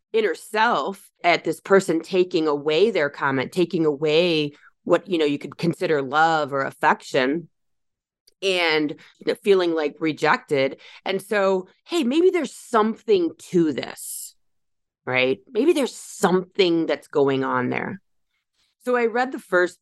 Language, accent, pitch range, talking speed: English, American, 145-190 Hz, 135 wpm